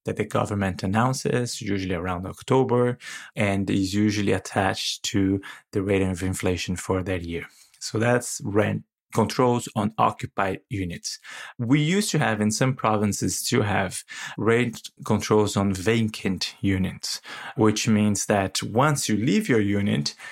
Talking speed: 140 wpm